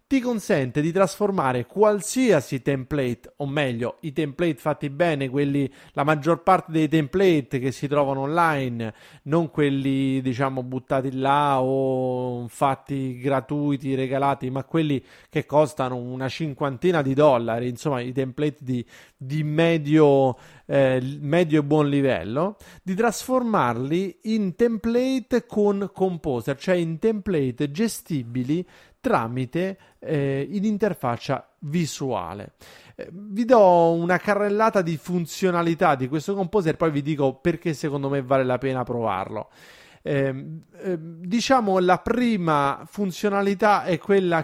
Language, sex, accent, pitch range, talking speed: Italian, male, native, 135-185 Hz, 125 wpm